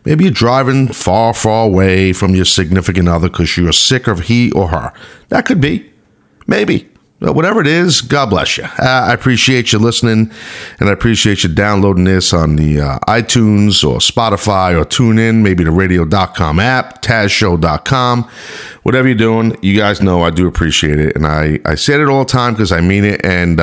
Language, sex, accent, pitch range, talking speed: English, male, American, 90-115 Hz, 190 wpm